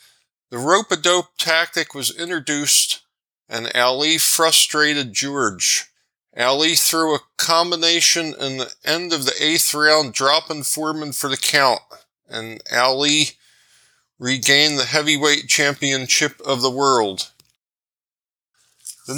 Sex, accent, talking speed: male, American, 110 wpm